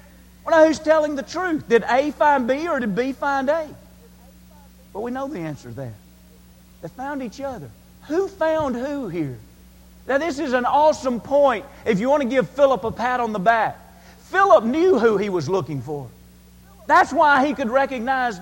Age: 40-59